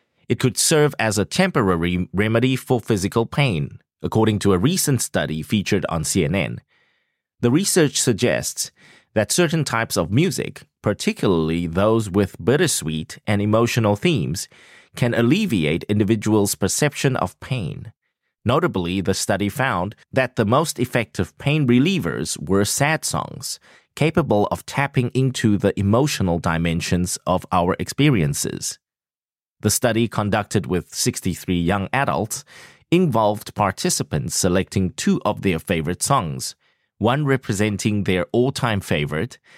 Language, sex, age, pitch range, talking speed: English, male, 30-49, 95-130 Hz, 125 wpm